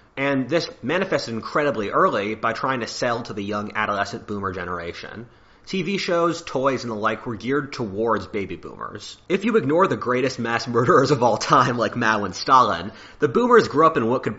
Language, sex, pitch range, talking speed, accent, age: English, male, 105-135 Hz, 195 wpm, American, 30-49